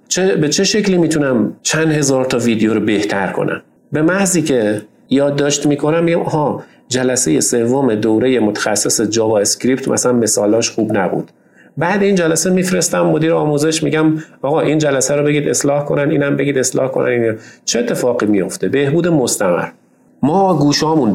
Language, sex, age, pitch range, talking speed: Persian, male, 40-59, 110-150 Hz, 155 wpm